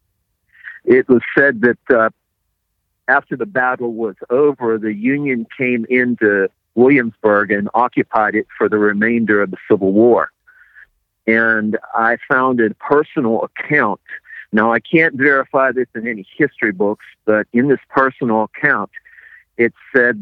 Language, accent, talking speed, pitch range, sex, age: English, American, 140 wpm, 105-120 Hz, male, 50-69